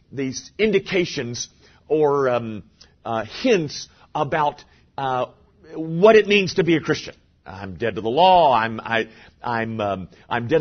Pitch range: 105-160 Hz